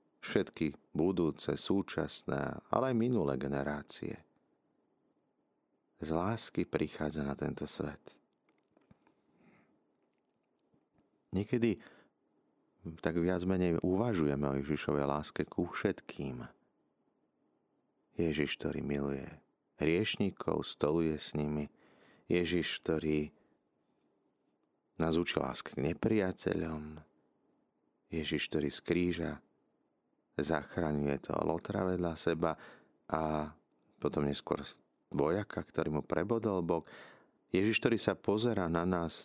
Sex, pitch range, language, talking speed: male, 75-90 Hz, Slovak, 90 wpm